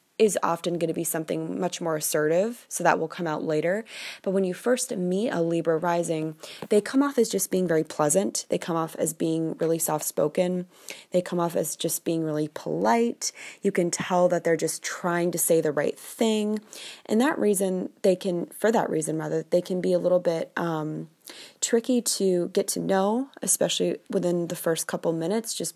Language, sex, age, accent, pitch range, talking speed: English, female, 20-39, American, 165-195 Hz, 200 wpm